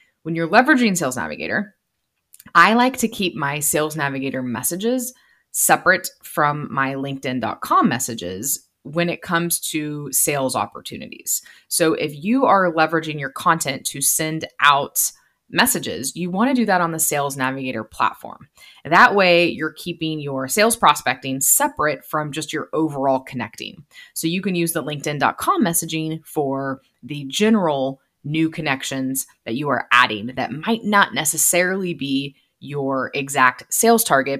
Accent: American